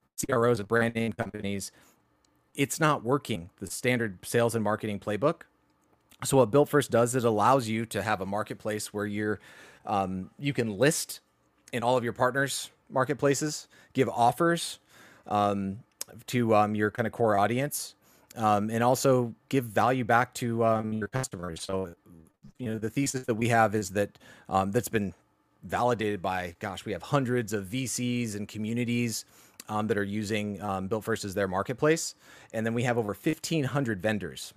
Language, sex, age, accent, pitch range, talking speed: English, male, 30-49, American, 100-125 Hz, 170 wpm